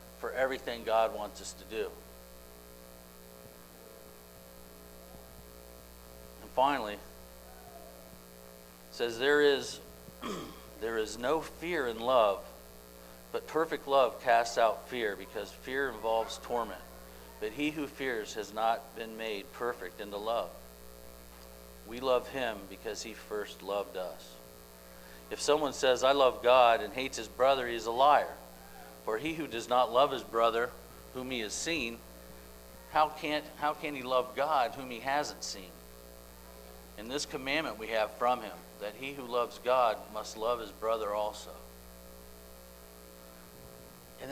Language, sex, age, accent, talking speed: English, male, 50-69, American, 140 wpm